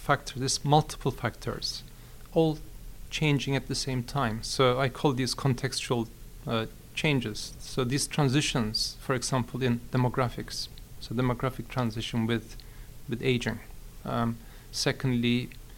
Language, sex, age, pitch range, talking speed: English, male, 40-59, 120-135 Hz, 120 wpm